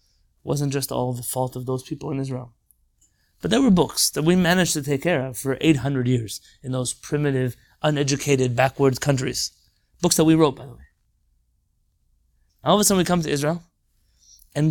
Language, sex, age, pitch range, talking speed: English, male, 30-49, 120-170 Hz, 190 wpm